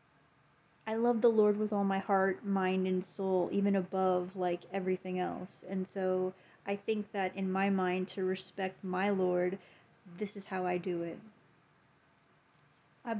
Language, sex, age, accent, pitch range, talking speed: English, female, 30-49, American, 185-205 Hz, 160 wpm